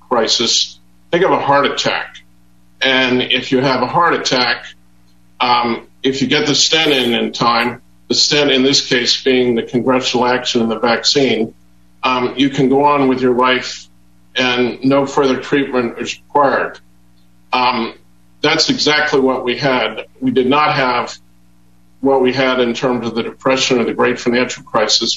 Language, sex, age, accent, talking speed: English, male, 50-69, American, 170 wpm